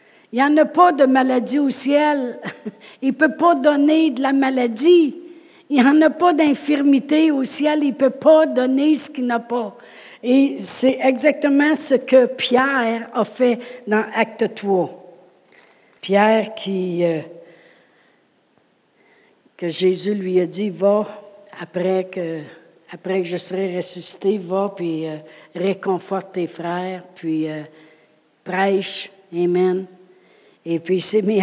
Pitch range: 180-235 Hz